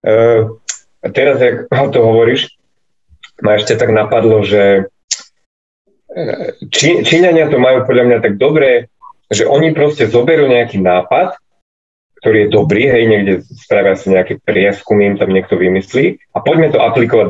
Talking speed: 140 wpm